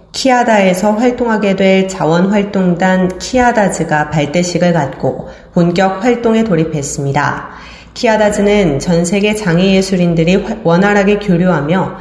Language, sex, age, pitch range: Korean, female, 40-59, 170-215 Hz